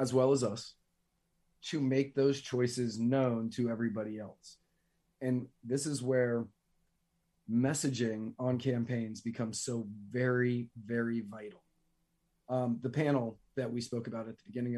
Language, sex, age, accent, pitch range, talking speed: English, male, 30-49, American, 115-130 Hz, 140 wpm